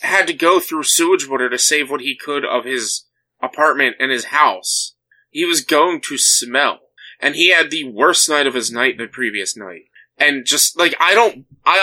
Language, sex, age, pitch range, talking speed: English, male, 20-39, 125-170 Hz, 205 wpm